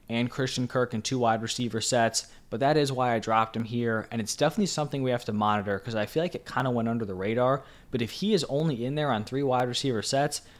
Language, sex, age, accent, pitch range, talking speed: English, male, 20-39, American, 110-130 Hz, 265 wpm